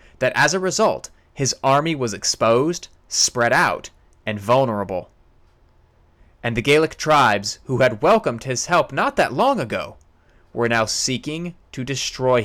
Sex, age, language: male, 30-49, English